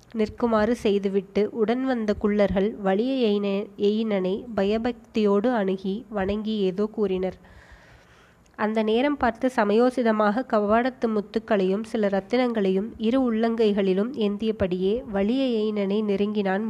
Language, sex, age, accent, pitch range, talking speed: Tamil, female, 20-39, native, 200-225 Hz, 85 wpm